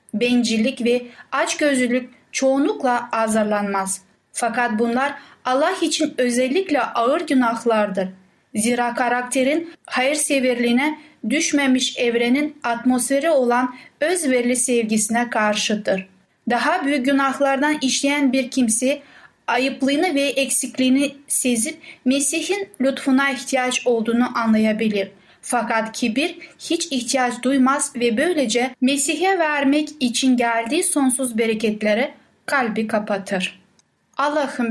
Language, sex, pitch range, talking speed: Turkish, female, 235-285 Hz, 90 wpm